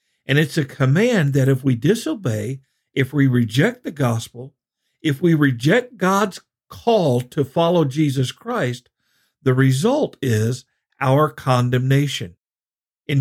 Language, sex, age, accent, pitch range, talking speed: English, male, 50-69, American, 130-180 Hz, 125 wpm